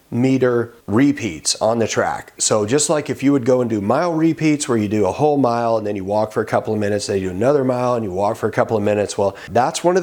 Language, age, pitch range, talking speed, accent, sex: English, 40-59, 115-145 Hz, 285 wpm, American, male